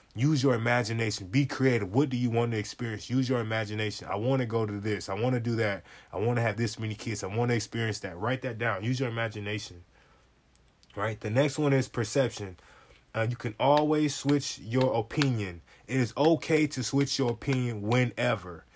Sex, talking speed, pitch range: male, 205 wpm, 110-130 Hz